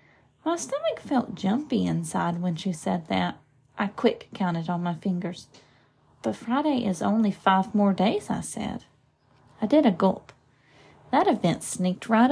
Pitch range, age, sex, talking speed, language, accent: 195-270 Hz, 30-49, female, 155 wpm, English, American